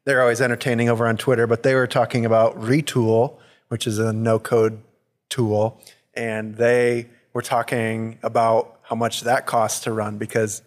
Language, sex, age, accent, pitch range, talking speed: English, male, 20-39, American, 110-125 Hz, 170 wpm